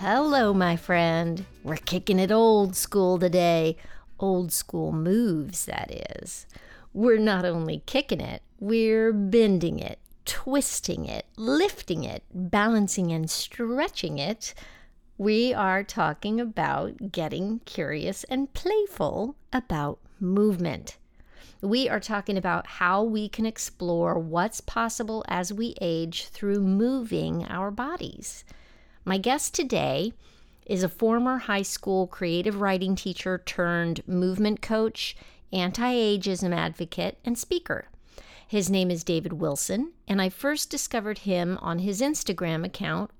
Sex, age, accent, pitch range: female, 50-69, American, 180-230 Hz